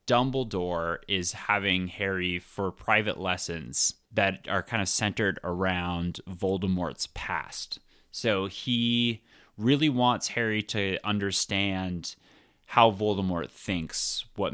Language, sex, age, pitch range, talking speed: English, male, 30-49, 85-105 Hz, 105 wpm